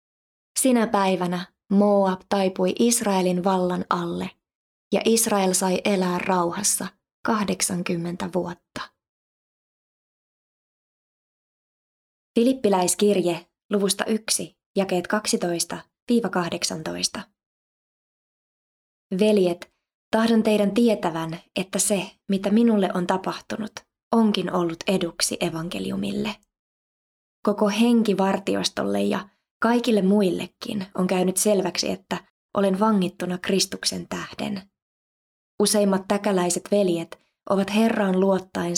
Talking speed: 80 wpm